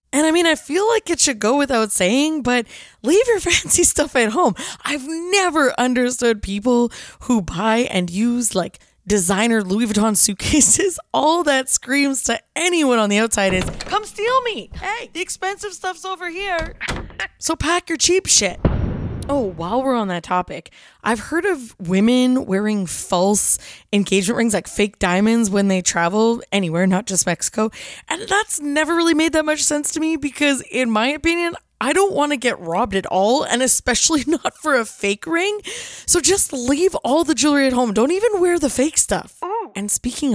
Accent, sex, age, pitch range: American, female, 20-39, 205-315 Hz